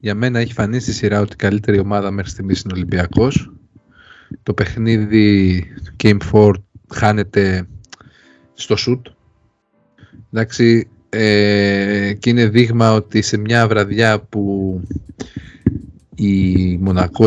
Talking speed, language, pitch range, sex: 120 wpm, Greek, 100-120 Hz, male